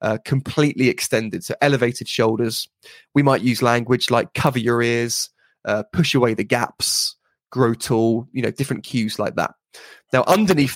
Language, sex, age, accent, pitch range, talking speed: English, male, 20-39, British, 120-140 Hz, 160 wpm